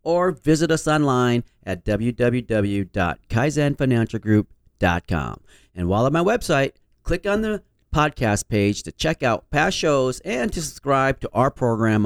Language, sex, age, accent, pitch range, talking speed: English, male, 40-59, American, 110-165 Hz, 135 wpm